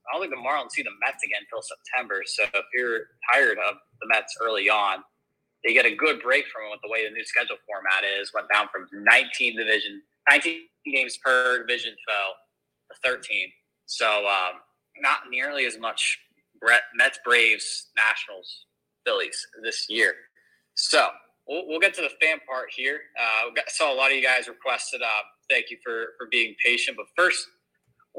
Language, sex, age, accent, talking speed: English, male, 20-39, American, 185 wpm